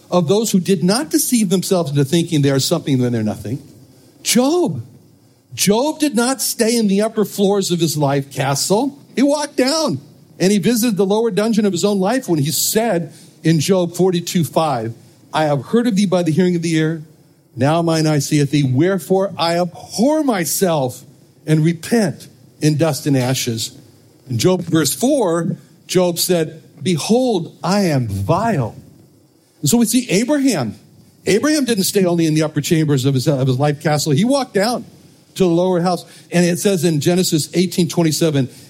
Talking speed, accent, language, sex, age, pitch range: 180 wpm, American, English, male, 60-79, 145-195 Hz